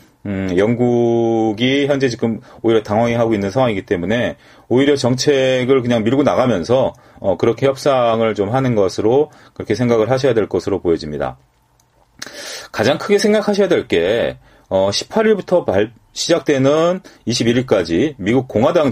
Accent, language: native, Korean